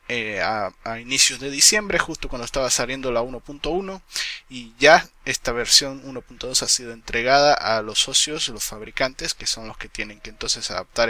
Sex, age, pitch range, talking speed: male, 20-39, 110-130 Hz, 180 wpm